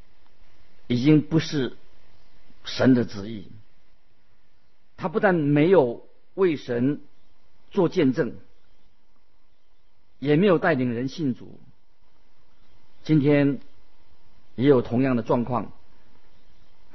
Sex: male